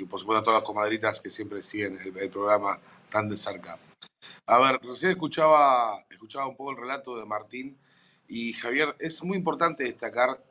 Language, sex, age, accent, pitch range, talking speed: Spanish, male, 30-49, Argentinian, 120-185 Hz, 190 wpm